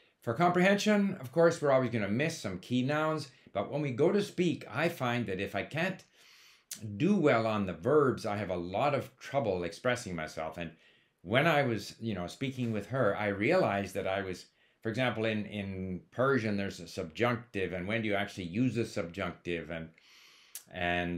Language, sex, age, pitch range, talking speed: English, male, 50-69, 100-130 Hz, 195 wpm